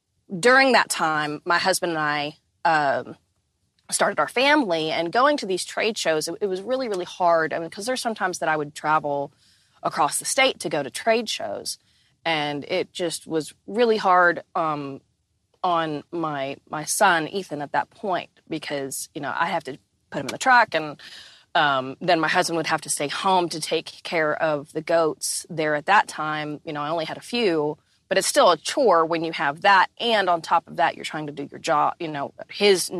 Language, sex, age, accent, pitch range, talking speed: English, female, 30-49, American, 145-180 Hz, 210 wpm